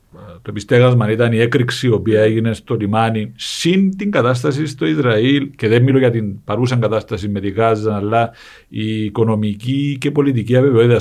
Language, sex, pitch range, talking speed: Greek, male, 110-160 Hz, 170 wpm